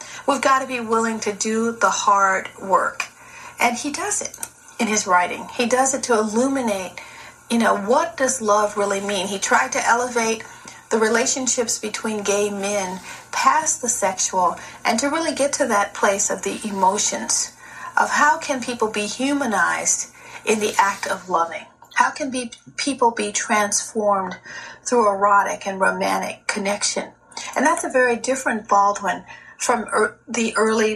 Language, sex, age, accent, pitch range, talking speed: English, female, 40-59, American, 200-255 Hz, 160 wpm